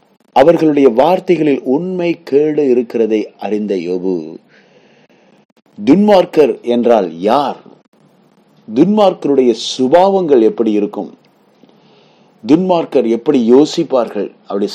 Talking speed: 75 wpm